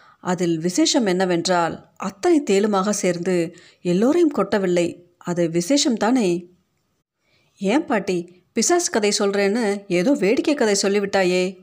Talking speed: 100 wpm